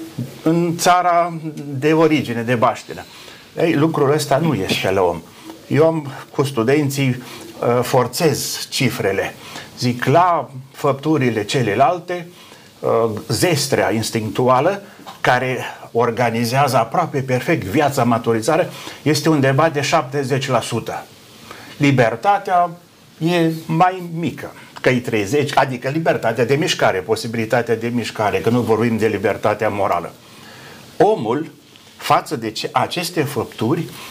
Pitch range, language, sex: 125-160 Hz, Romanian, male